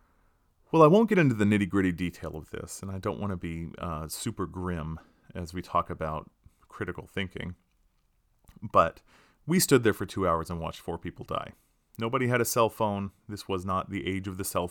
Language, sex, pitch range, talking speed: English, male, 85-105 Hz, 205 wpm